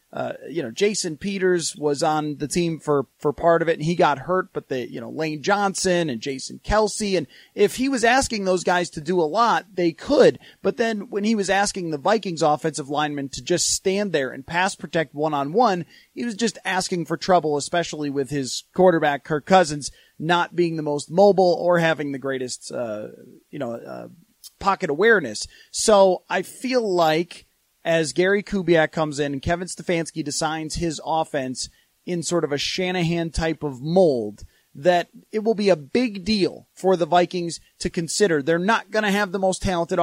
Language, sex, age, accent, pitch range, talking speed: English, male, 30-49, American, 160-200 Hz, 195 wpm